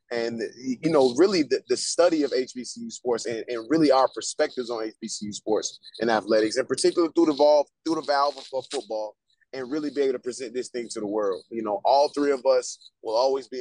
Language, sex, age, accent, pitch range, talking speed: English, male, 20-39, American, 125-155 Hz, 220 wpm